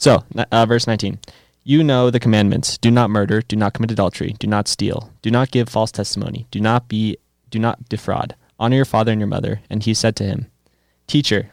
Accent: American